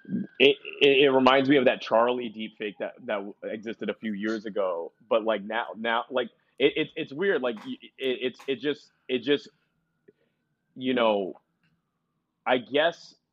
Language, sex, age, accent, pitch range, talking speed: English, male, 30-49, American, 105-130 Hz, 165 wpm